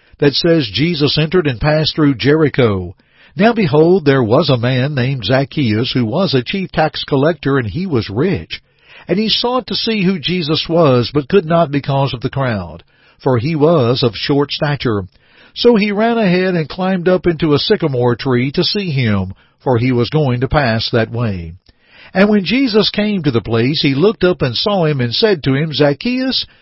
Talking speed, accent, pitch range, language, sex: 195 wpm, American, 130-175 Hz, English, male